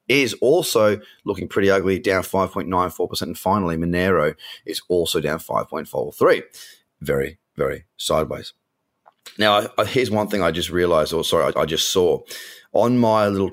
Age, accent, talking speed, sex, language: 30-49, Australian, 160 wpm, male, English